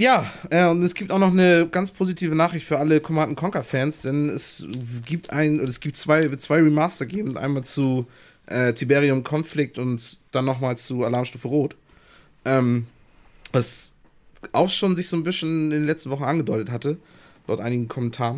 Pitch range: 120-150 Hz